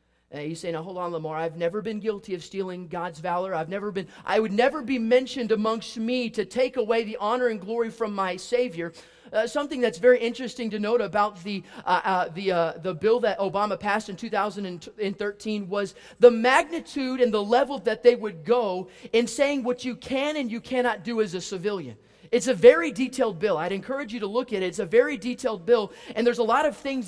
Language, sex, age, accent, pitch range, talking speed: English, male, 40-59, American, 195-245 Hz, 220 wpm